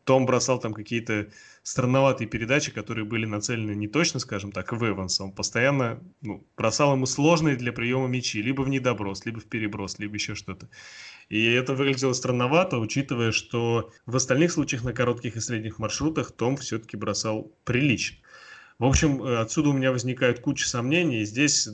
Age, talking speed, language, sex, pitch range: 20-39, 170 wpm, Russian, male, 110-130 Hz